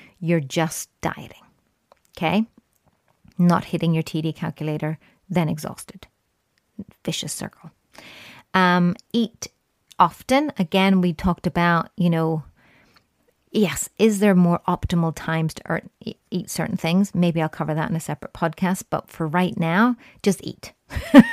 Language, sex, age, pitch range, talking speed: English, female, 30-49, 165-195 Hz, 130 wpm